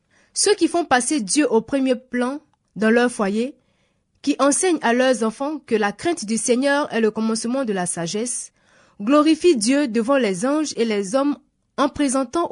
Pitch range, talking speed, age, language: 220-295 Hz, 175 wpm, 20-39, French